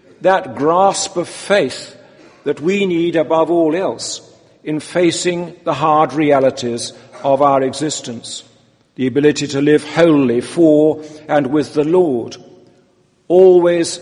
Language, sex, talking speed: English, male, 125 wpm